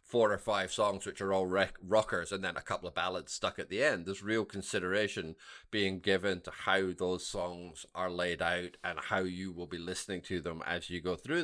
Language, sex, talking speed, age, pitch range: English, male, 220 wpm, 30-49, 90-120 Hz